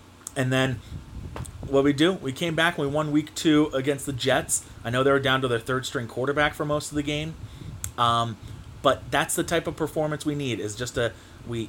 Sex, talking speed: male, 220 wpm